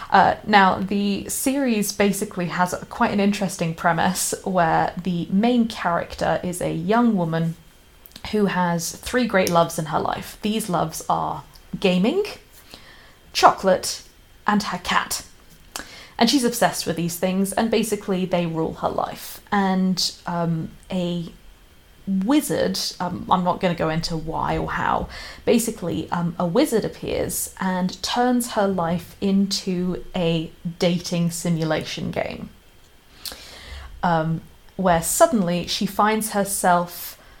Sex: female